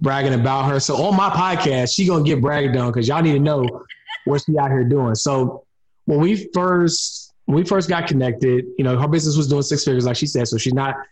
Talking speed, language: 250 wpm, English